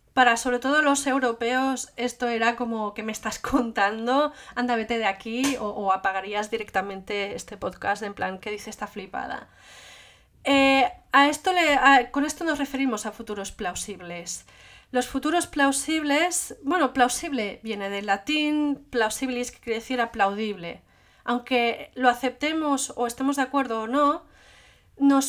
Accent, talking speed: Spanish, 150 wpm